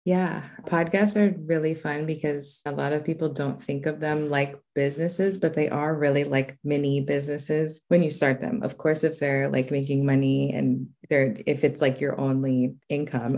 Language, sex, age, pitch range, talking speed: English, female, 20-39, 135-155 Hz, 190 wpm